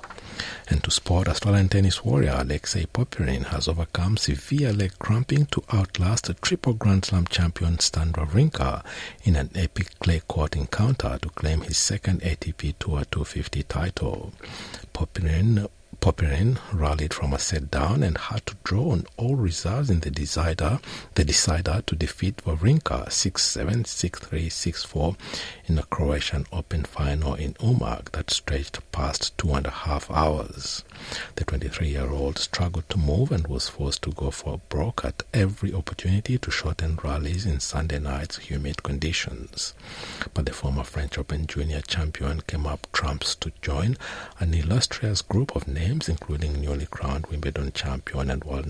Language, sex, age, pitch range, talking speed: English, male, 60-79, 75-95 Hz, 155 wpm